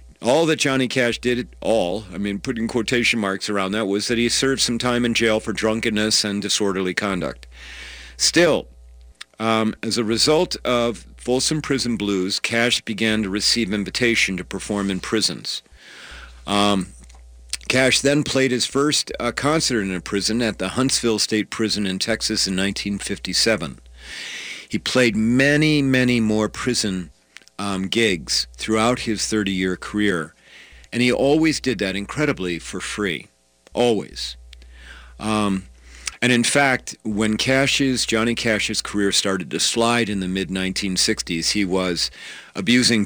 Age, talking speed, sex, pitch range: 50-69, 140 wpm, male, 95-120 Hz